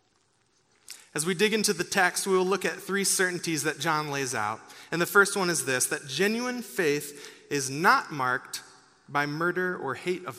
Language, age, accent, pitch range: English, 30-49, American, 140-190 Hz